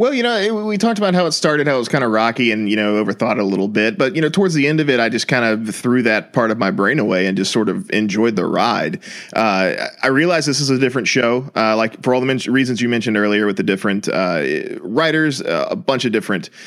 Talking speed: 270 wpm